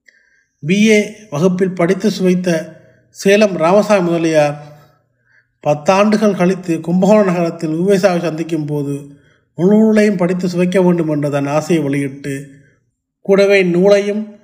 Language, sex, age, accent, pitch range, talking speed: Tamil, male, 30-49, native, 150-200 Hz, 100 wpm